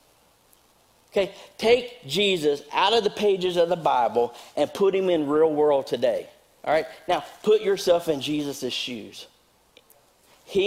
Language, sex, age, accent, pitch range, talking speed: English, male, 50-69, American, 120-155 Hz, 145 wpm